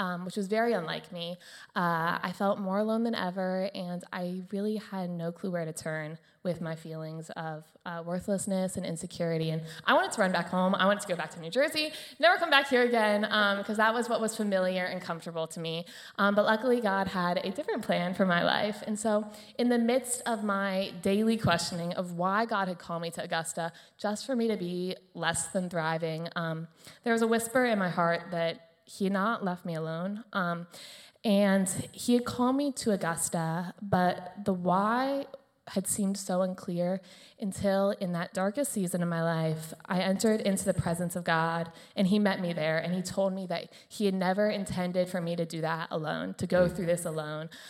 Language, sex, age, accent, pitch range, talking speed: English, female, 20-39, American, 175-210 Hz, 210 wpm